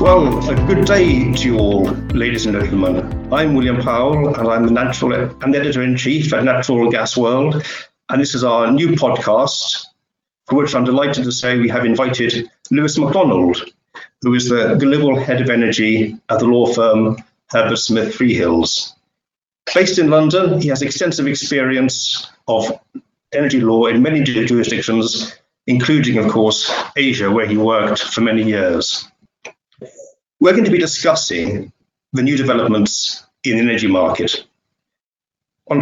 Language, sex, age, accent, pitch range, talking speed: English, male, 50-69, British, 110-135 Hz, 150 wpm